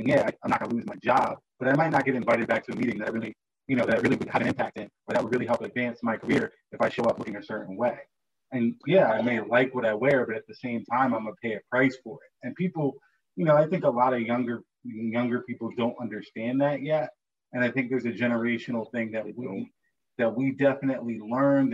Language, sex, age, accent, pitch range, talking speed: English, male, 30-49, American, 110-135 Hz, 255 wpm